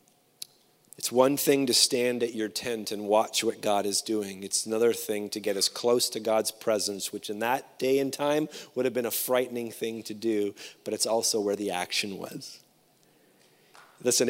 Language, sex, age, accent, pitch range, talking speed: English, male, 30-49, American, 105-140 Hz, 195 wpm